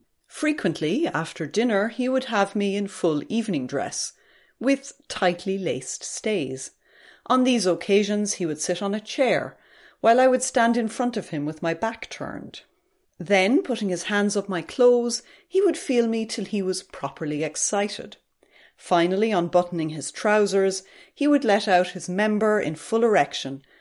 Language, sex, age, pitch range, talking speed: English, female, 30-49, 165-225 Hz, 165 wpm